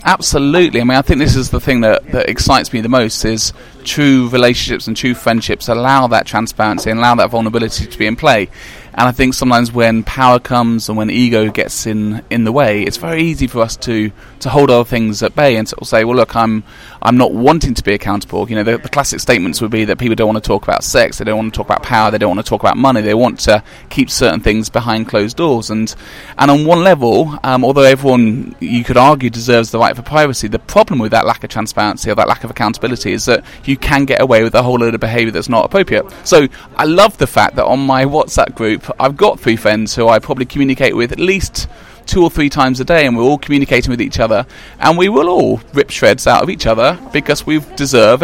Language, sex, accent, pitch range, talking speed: English, male, British, 115-135 Hz, 250 wpm